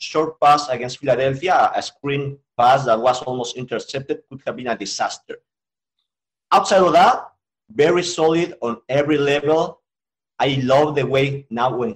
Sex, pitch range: male, 125-155 Hz